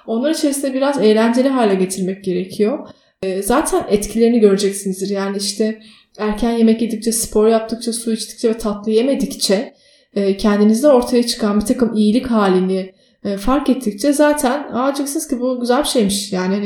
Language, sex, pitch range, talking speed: Turkish, female, 205-250 Hz, 140 wpm